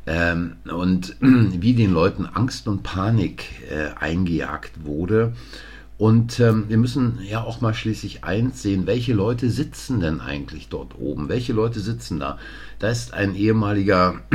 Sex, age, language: male, 50-69, German